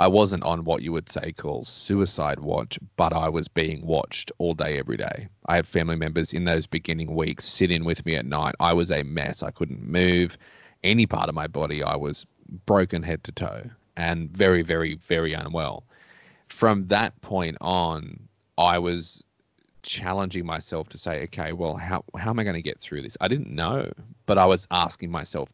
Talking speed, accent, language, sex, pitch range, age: 200 wpm, Australian, English, male, 80-95 Hz, 20-39